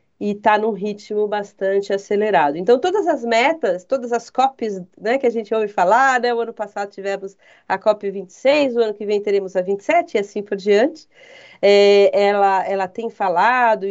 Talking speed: 180 wpm